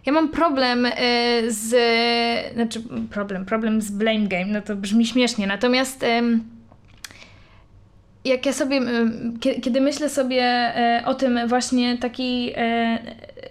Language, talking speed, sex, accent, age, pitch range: Polish, 140 wpm, female, native, 20-39, 230-260 Hz